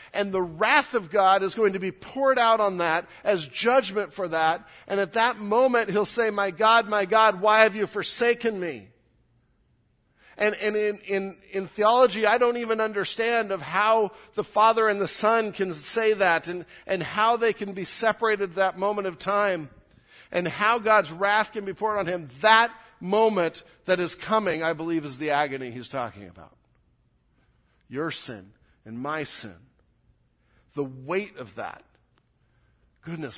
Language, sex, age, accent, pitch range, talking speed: English, male, 50-69, American, 140-210 Hz, 175 wpm